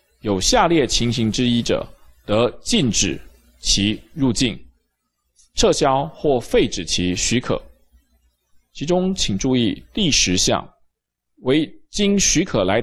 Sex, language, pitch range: male, Chinese, 90-130 Hz